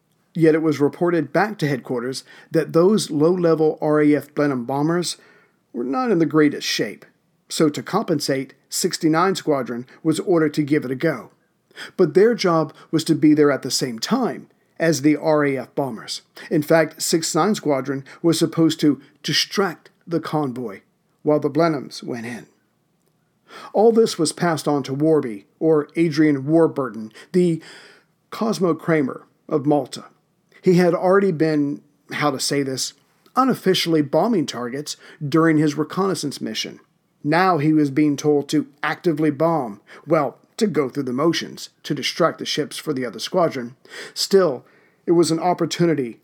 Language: English